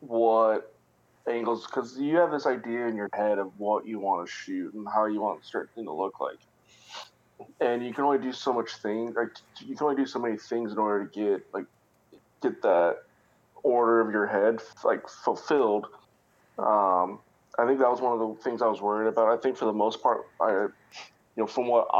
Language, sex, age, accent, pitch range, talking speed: English, male, 20-39, American, 105-120 Hz, 215 wpm